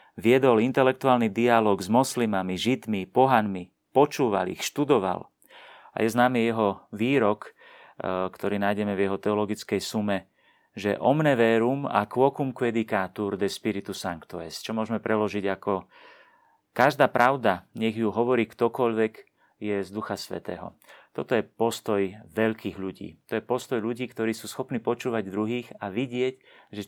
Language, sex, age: Slovak, male, 30-49